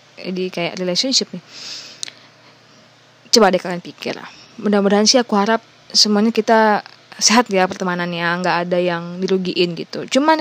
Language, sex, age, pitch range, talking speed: Indonesian, female, 20-39, 190-235 Hz, 140 wpm